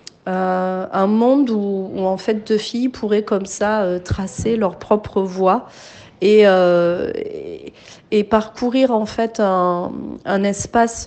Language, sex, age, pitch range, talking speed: Italian, female, 30-49, 190-230 Hz, 145 wpm